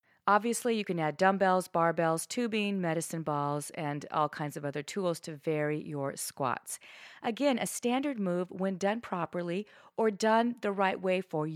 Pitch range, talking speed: 160-210 Hz, 165 wpm